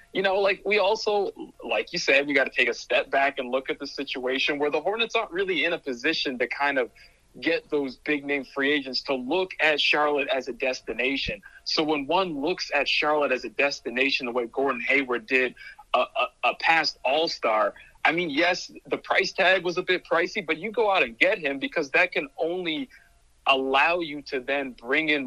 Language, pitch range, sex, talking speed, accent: English, 140-185 Hz, male, 210 wpm, American